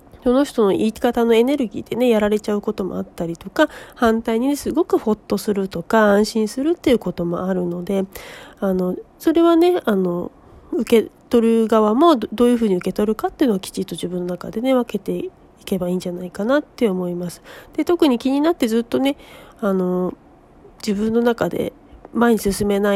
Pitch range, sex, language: 195-275 Hz, female, Japanese